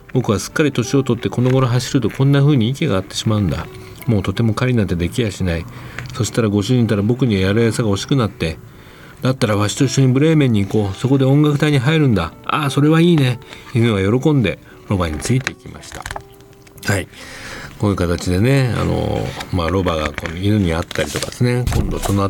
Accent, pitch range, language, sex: native, 85-125 Hz, Japanese, male